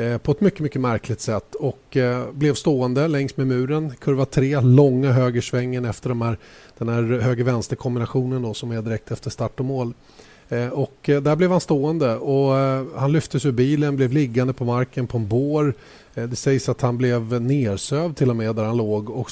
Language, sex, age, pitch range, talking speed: Swedish, male, 30-49, 115-135 Hz, 200 wpm